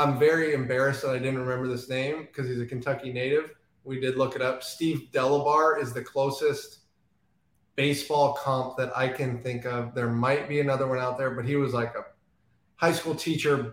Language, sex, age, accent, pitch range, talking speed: English, male, 20-39, American, 130-150 Hz, 200 wpm